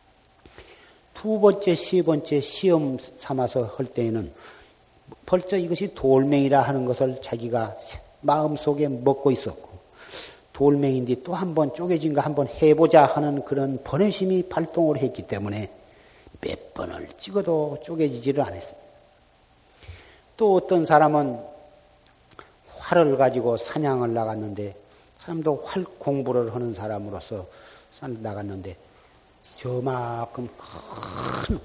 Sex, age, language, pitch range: male, 50-69, Korean, 120-165 Hz